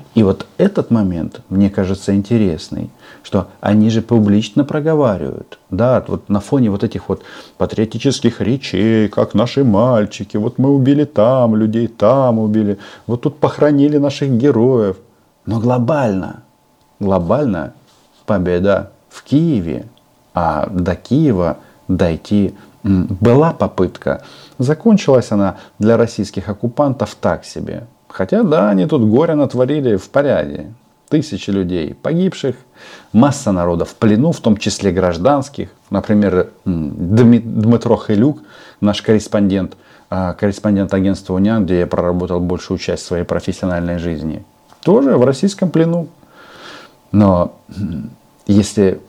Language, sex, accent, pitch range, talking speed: Russian, male, native, 95-120 Hz, 120 wpm